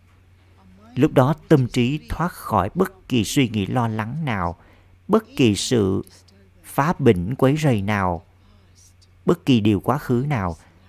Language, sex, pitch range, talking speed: Vietnamese, male, 90-125 Hz, 150 wpm